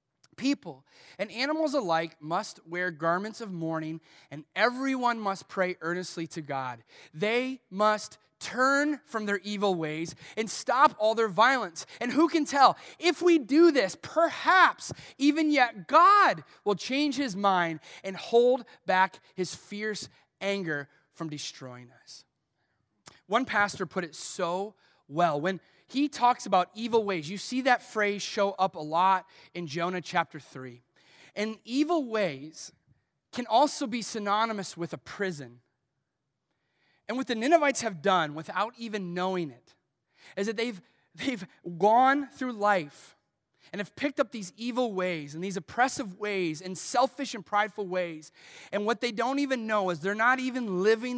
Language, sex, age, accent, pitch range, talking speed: English, male, 30-49, American, 165-240 Hz, 155 wpm